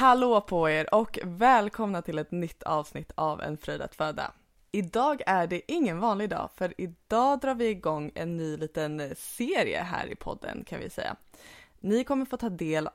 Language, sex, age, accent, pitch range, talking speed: Swedish, female, 20-39, native, 155-200 Hz, 185 wpm